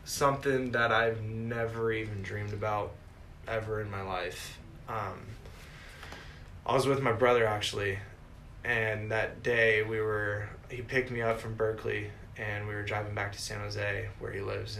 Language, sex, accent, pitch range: English, male, American, 100-110 Hz